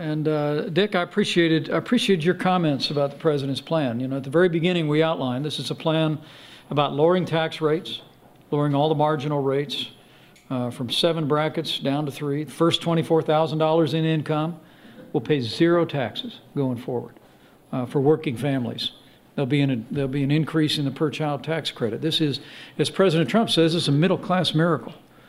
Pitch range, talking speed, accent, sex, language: 140-160 Hz, 190 wpm, American, male, English